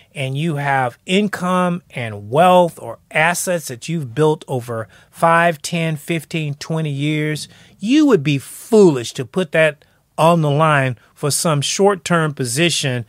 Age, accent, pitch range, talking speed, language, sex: 30-49, American, 145-225 Hz, 140 wpm, English, male